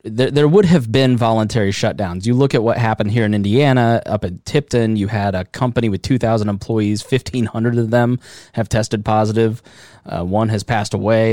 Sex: male